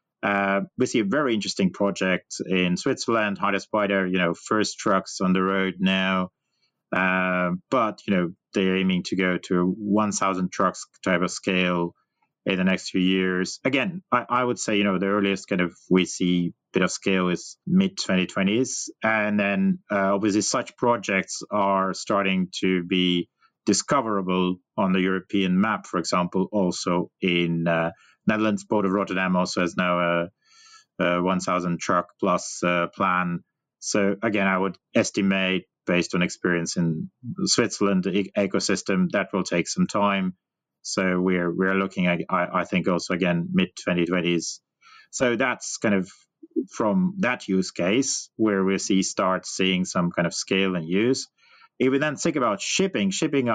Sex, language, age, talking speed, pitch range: male, English, 30-49, 165 wpm, 90-100 Hz